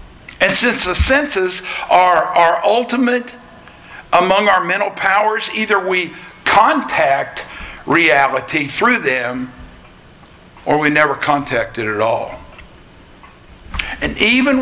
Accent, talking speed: American, 105 wpm